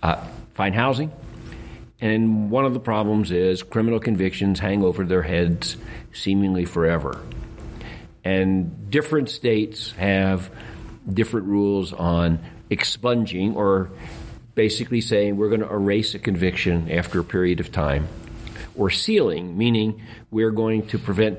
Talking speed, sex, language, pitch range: 130 wpm, male, English, 90-115 Hz